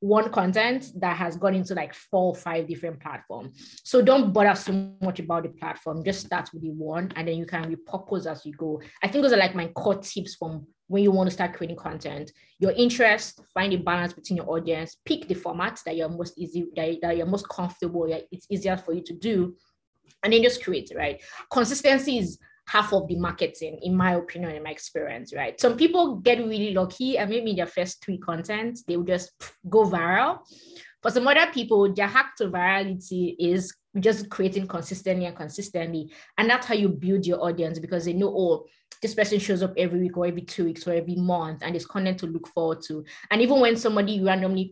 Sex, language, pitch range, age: female, English, 170-210 Hz, 20-39